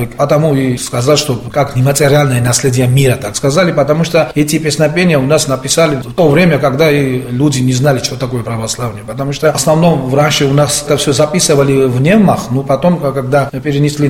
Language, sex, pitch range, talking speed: Russian, male, 130-165 Hz, 185 wpm